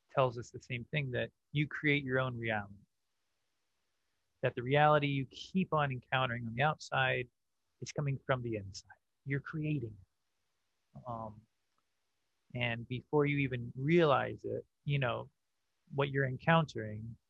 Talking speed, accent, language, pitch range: 140 wpm, American, English, 110-140 Hz